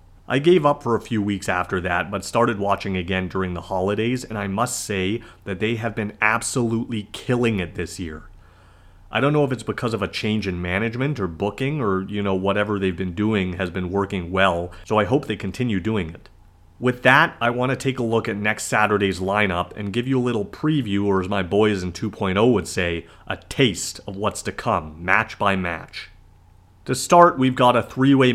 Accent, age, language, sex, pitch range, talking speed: American, 30-49, English, male, 95-115 Hz, 215 wpm